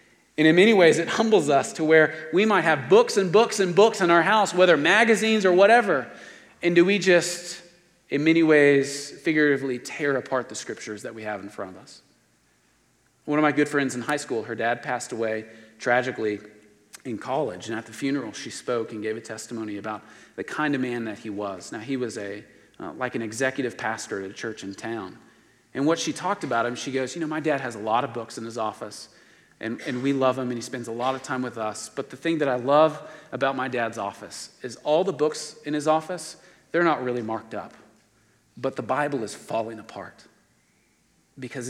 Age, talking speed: 40-59, 220 wpm